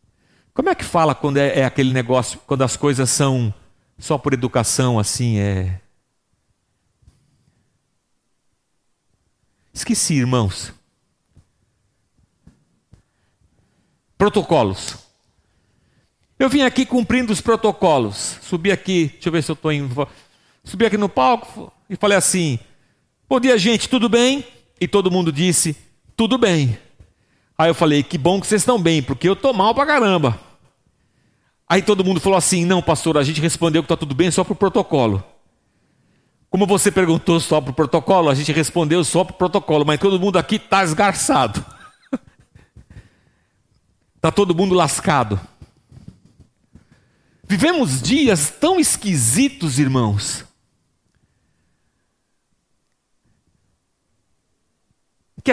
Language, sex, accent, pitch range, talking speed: Portuguese, male, Brazilian, 130-215 Hz, 125 wpm